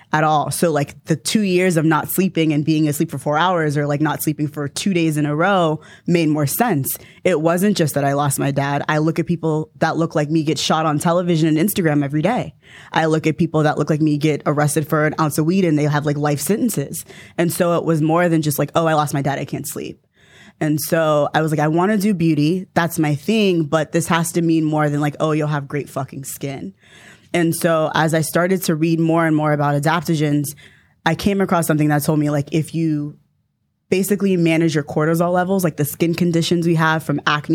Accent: American